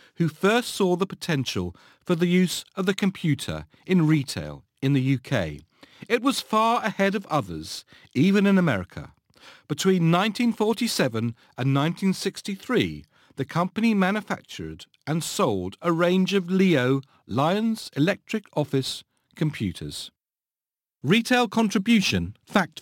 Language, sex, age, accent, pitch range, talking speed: English, male, 40-59, British, 135-200 Hz, 120 wpm